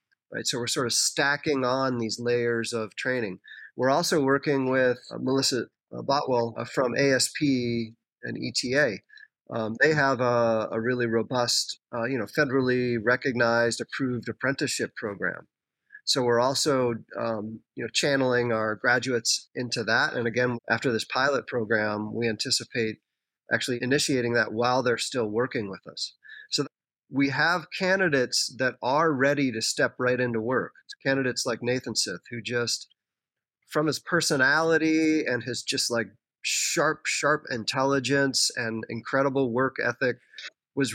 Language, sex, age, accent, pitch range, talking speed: English, male, 30-49, American, 115-135 Hz, 150 wpm